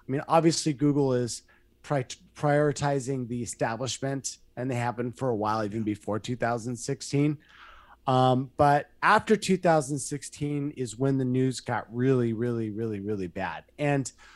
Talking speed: 135 wpm